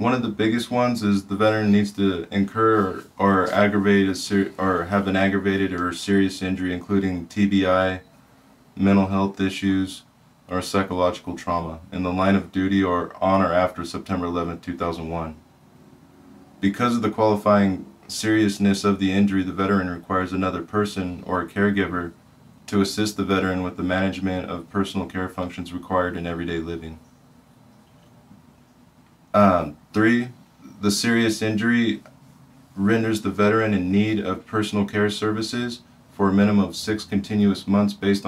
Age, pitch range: 20-39, 95-105 Hz